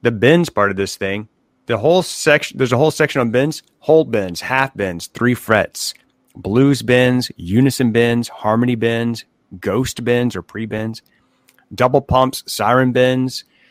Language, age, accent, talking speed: English, 40-59, American, 160 wpm